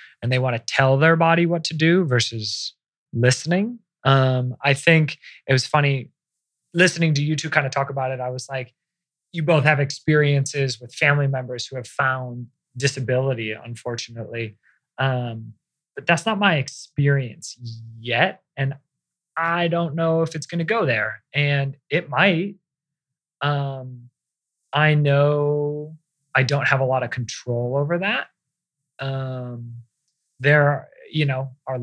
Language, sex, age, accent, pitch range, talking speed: English, male, 20-39, American, 125-155 Hz, 145 wpm